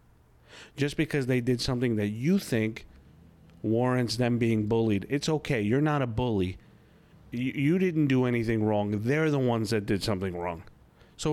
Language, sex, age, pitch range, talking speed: English, male, 40-59, 105-160 Hz, 170 wpm